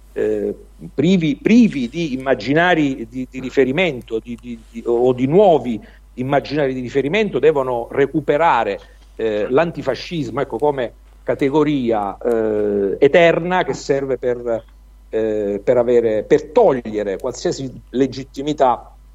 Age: 50-69